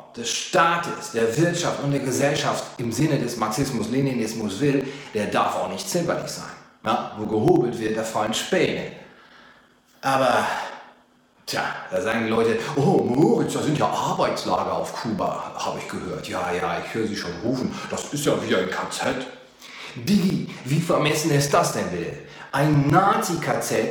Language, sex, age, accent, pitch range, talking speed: German, male, 40-59, German, 130-165 Hz, 160 wpm